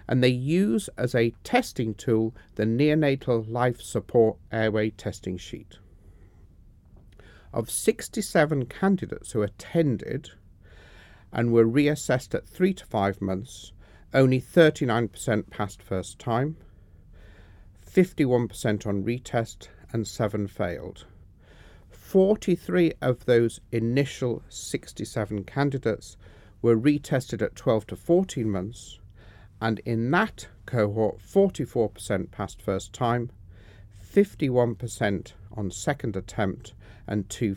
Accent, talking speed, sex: British, 105 wpm, male